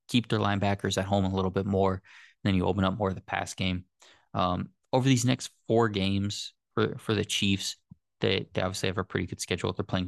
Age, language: 20-39, English